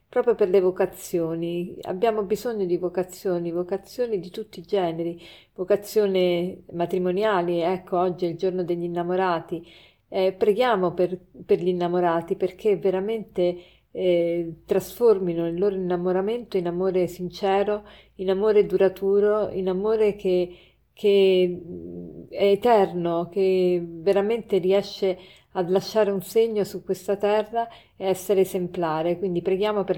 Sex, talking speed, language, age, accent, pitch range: female, 130 wpm, Italian, 40-59, native, 180-210 Hz